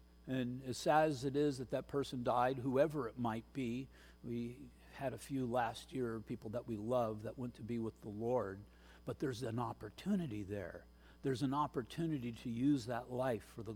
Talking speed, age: 195 wpm, 50-69